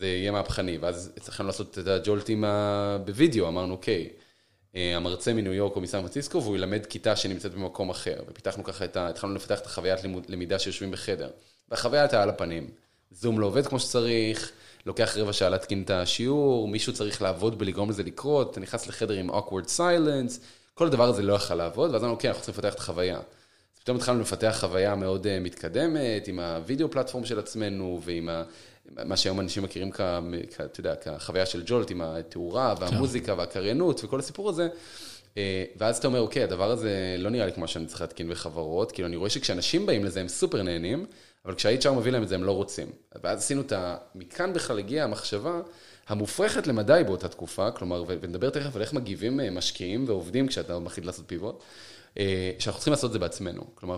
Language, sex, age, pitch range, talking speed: Hebrew, male, 20-39, 90-120 Hz, 170 wpm